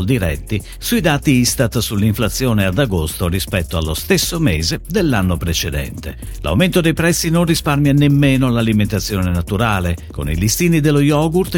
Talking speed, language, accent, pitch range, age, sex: 135 wpm, Italian, native, 90-145 Hz, 50-69, male